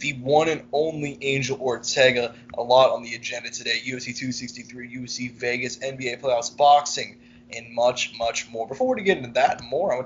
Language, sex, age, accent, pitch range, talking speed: English, male, 20-39, American, 120-145 Hz, 190 wpm